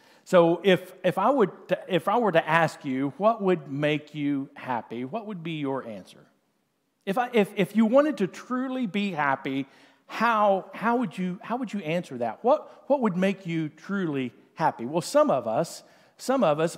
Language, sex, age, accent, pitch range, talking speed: English, male, 50-69, American, 150-200 Hz, 195 wpm